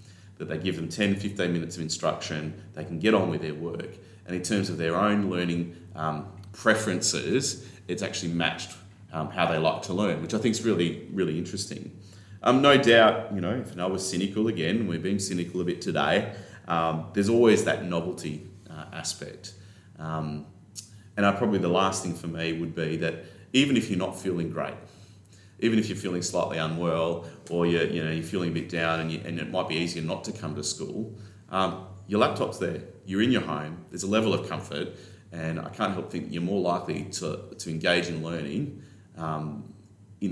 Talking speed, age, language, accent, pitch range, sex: 205 wpm, 30-49, English, Australian, 80-100 Hz, male